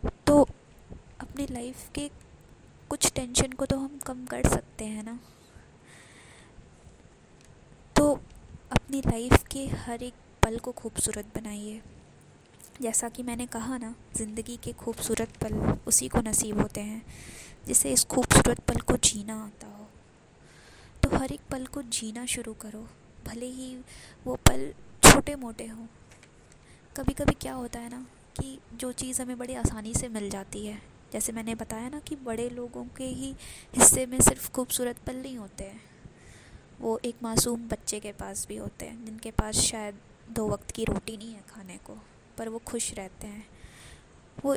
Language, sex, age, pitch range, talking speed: Hindi, female, 20-39, 220-255 Hz, 160 wpm